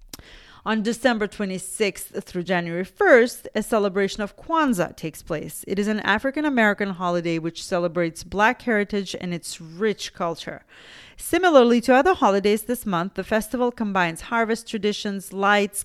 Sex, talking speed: female, 140 wpm